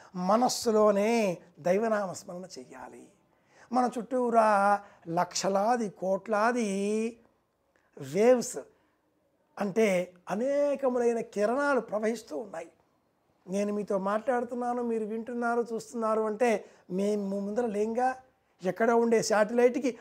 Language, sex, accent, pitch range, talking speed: Telugu, male, native, 200-245 Hz, 75 wpm